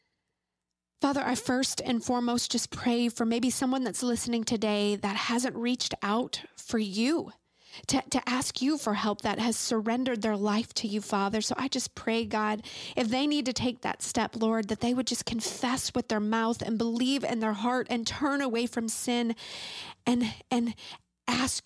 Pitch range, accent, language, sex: 215-250 Hz, American, English, female